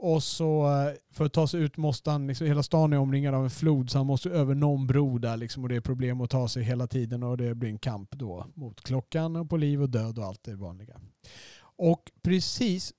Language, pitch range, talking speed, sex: Swedish, 125-155 Hz, 245 wpm, male